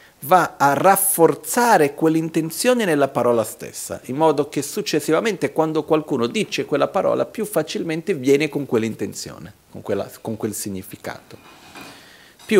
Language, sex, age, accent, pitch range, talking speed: Italian, male, 40-59, native, 120-165 Hz, 130 wpm